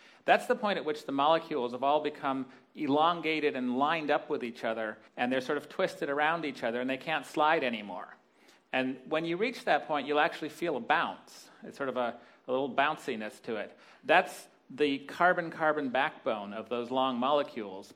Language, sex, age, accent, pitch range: Chinese, male, 40-59, American, 130-165 Hz